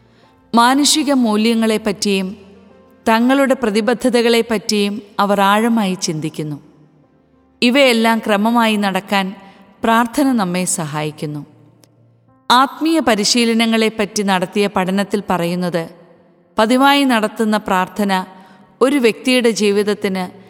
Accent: native